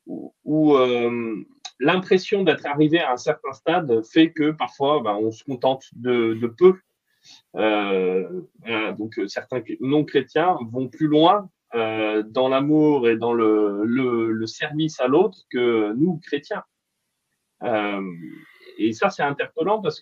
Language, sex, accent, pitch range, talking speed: French, male, French, 120-165 Hz, 145 wpm